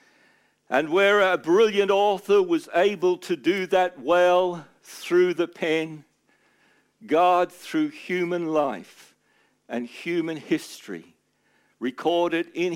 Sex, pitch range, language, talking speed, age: male, 165-210 Hz, English, 110 wpm, 60-79